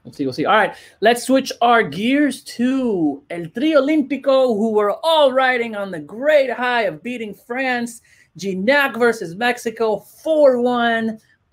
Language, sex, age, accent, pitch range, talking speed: English, male, 30-49, American, 150-235 Hz, 150 wpm